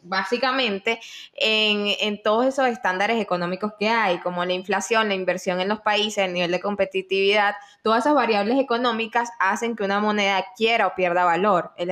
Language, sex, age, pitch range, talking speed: Spanish, female, 10-29, 190-235 Hz, 170 wpm